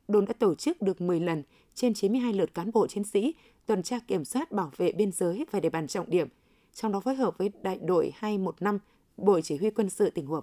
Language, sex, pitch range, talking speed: Vietnamese, female, 185-235 Hz, 240 wpm